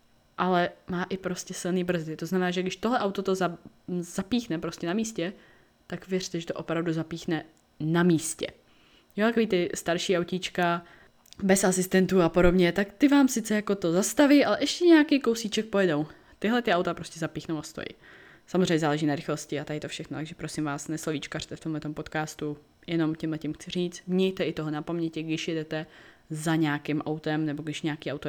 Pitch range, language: 160-200 Hz, Czech